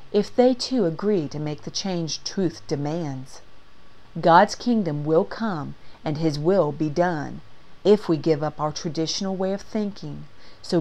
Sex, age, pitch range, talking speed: female, 40-59, 150-200 Hz, 160 wpm